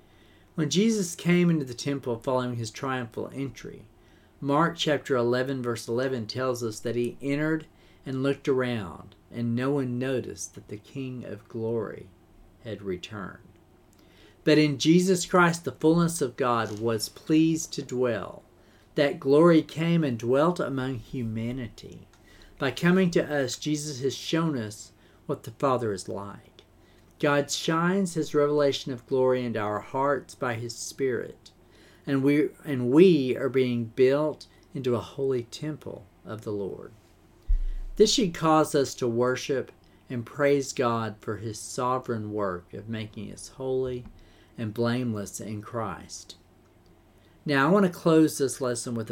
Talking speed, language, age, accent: 145 wpm, English, 50-69, American